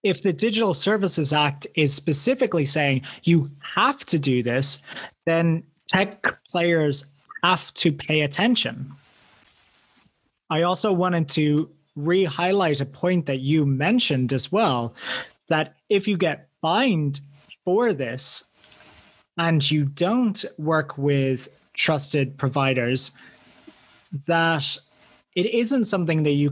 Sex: male